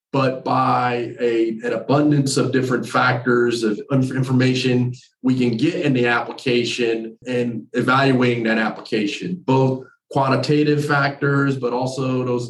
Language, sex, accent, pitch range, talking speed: English, male, American, 125-150 Hz, 125 wpm